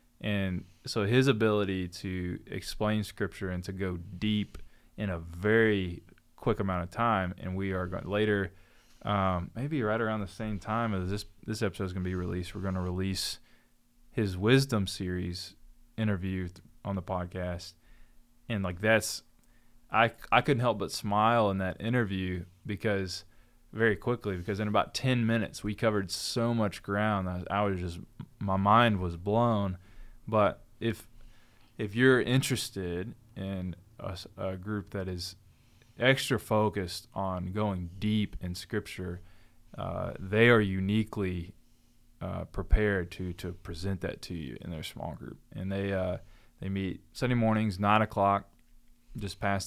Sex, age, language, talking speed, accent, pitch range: male, 20-39, English, 155 wpm, American, 90-115 Hz